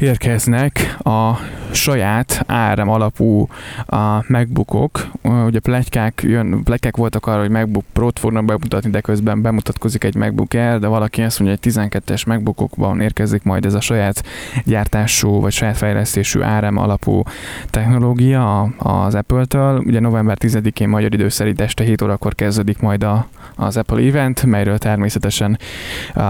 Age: 20-39